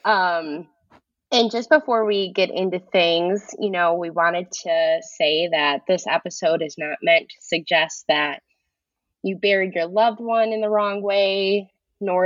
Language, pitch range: English, 155-210 Hz